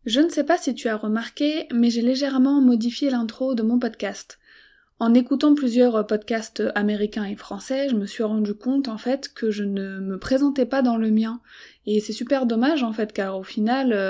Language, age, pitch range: French, 20-39, 215-255 Hz